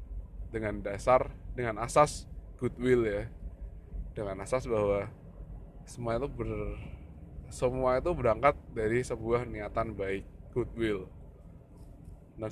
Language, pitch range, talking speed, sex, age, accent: Indonesian, 95-120 Hz, 100 wpm, male, 20-39, native